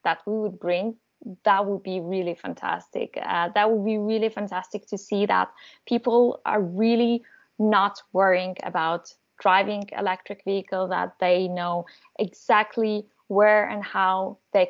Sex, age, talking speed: female, 20-39, 145 wpm